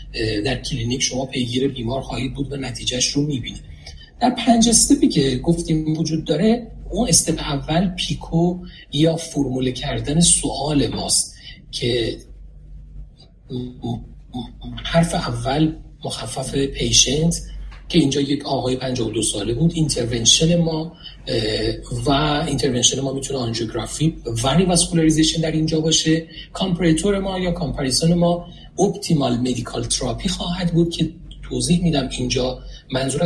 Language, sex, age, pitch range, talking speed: Persian, male, 40-59, 125-165 Hz, 120 wpm